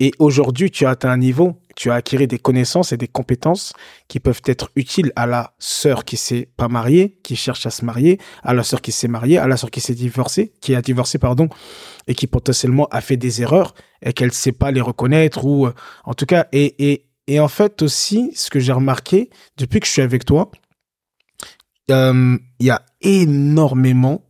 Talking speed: 215 wpm